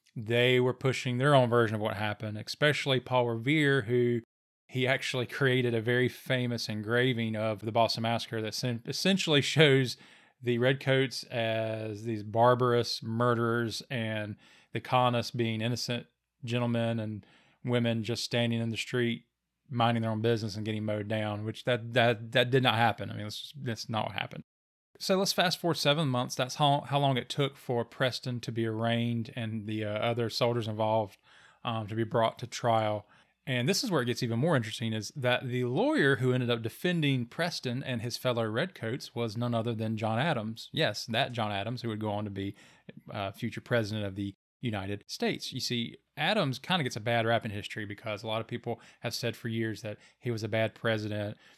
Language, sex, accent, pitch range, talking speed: English, male, American, 110-125 Hz, 195 wpm